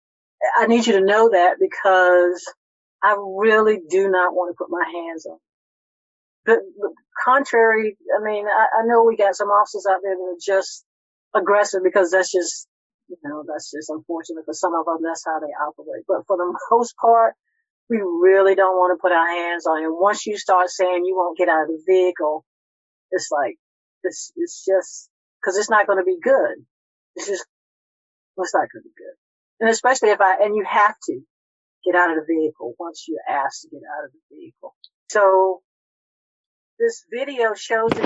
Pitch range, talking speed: 180-230 Hz, 195 wpm